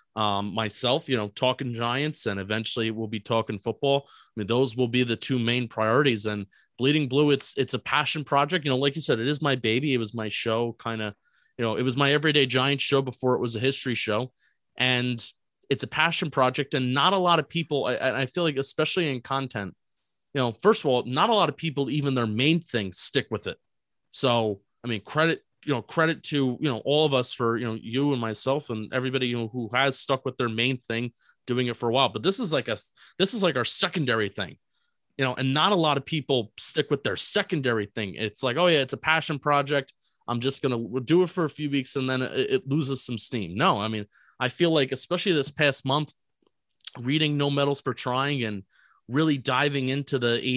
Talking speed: 235 wpm